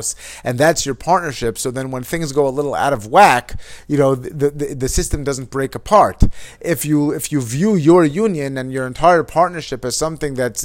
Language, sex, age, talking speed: English, male, 30-49, 210 wpm